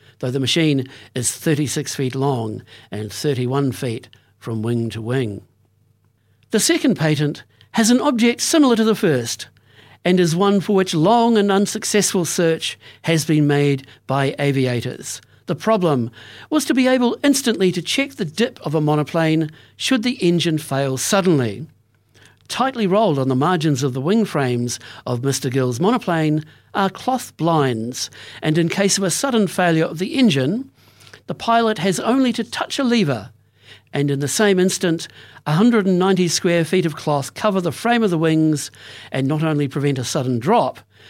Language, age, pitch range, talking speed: English, 60-79, 125-200 Hz, 165 wpm